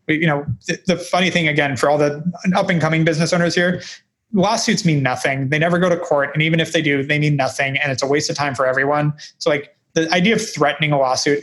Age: 20-39